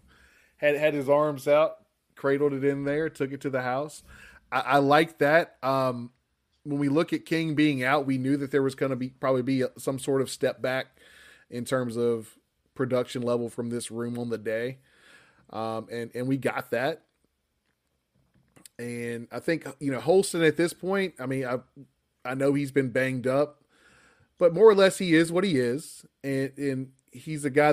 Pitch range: 120-140 Hz